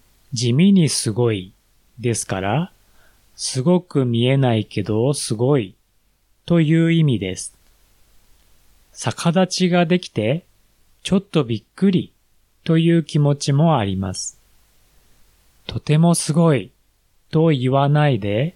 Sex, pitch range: male, 105-165 Hz